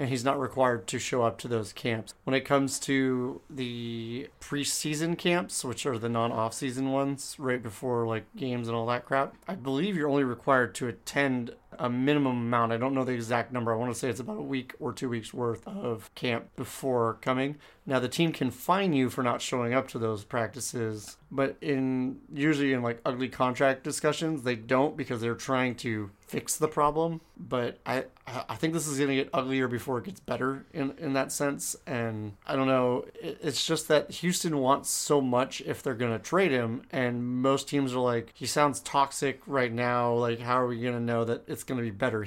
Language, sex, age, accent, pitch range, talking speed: English, male, 30-49, American, 120-140 Hz, 215 wpm